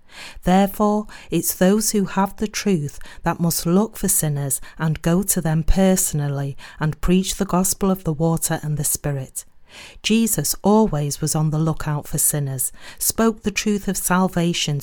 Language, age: English, 40-59